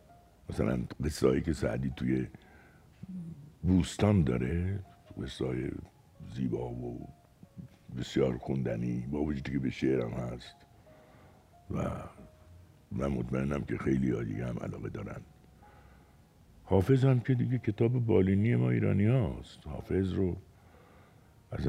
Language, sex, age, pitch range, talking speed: Persian, male, 60-79, 65-105 Hz, 115 wpm